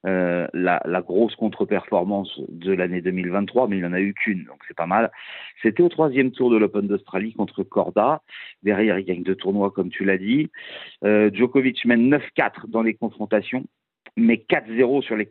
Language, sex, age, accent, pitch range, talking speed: French, male, 50-69, French, 105-135 Hz, 190 wpm